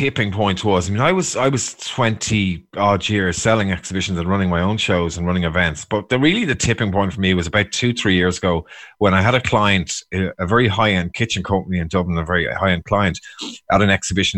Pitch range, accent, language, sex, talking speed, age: 90-125 Hz, Irish, English, male, 230 wpm, 30-49